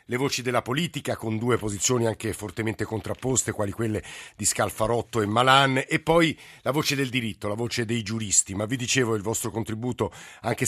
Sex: male